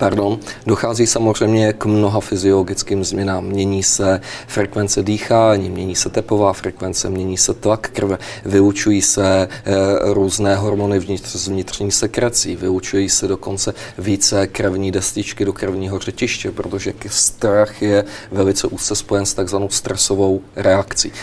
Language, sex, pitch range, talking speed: Czech, male, 100-115 Hz, 135 wpm